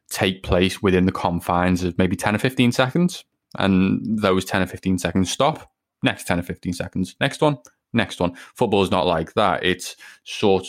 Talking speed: 190 wpm